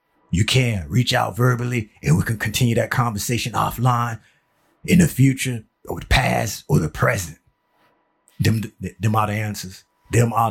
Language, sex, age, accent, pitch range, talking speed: English, male, 30-49, American, 115-140 Hz, 165 wpm